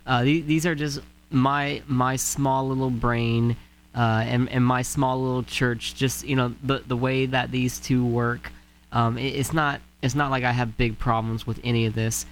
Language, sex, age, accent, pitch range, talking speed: English, male, 20-39, American, 115-140 Hz, 205 wpm